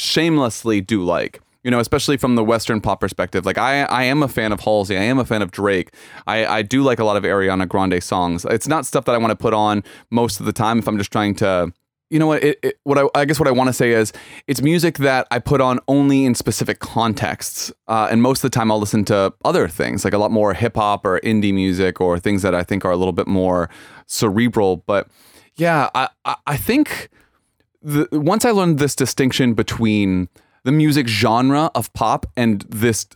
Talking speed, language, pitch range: 230 wpm, English, 105-135 Hz